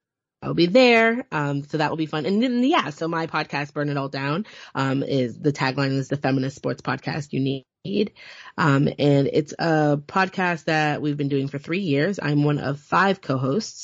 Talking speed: 205 wpm